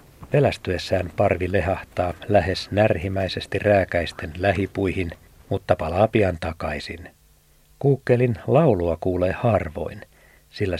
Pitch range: 90-110 Hz